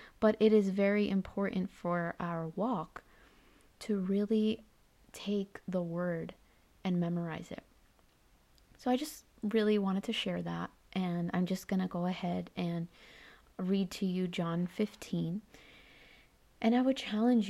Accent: American